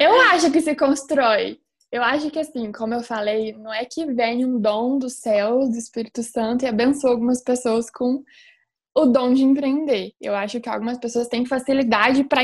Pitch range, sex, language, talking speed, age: 230-295 Hz, female, Portuguese, 195 wpm, 20-39